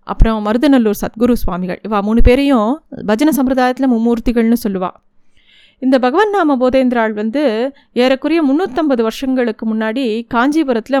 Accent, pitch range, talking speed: native, 220-265 Hz, 115 wpm